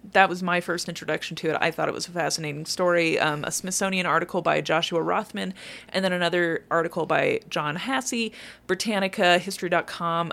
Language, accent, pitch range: English, American, 170-215 Hz